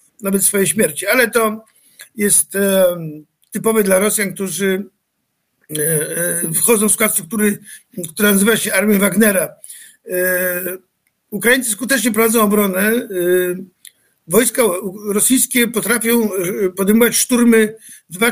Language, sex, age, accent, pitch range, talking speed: Polish, male, 50-69, native, 200-230 Hz, 110 wpm